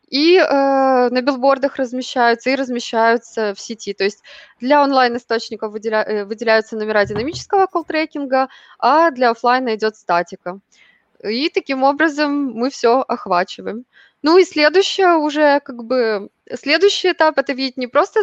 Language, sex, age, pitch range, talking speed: Russian, female, 20-39, 225-280 Hz, 140 wpm